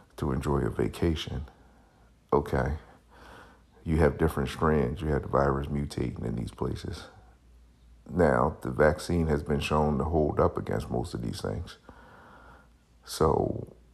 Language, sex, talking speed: English, male, 140 wpm